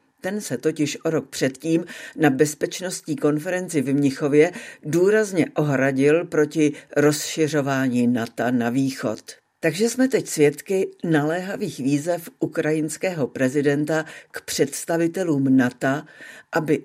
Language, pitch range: Czech, 140-170 Hz